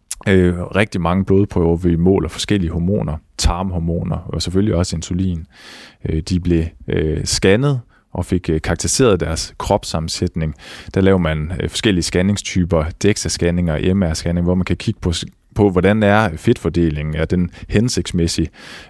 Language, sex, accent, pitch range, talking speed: Danish, male, native, 85-105 Hz, 125 wpm